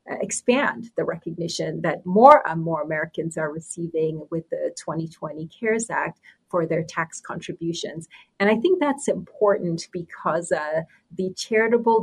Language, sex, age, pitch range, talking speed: English, female, 30-49, 165-205 Hz, 140 wpm